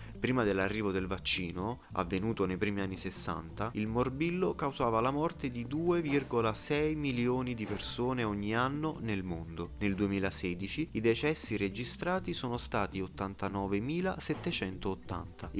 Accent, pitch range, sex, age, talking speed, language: native, 95-135 Hz, male, 30-49, 120 wpm, Italian